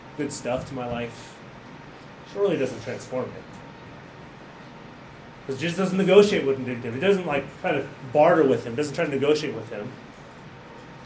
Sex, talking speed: male, 170 wpm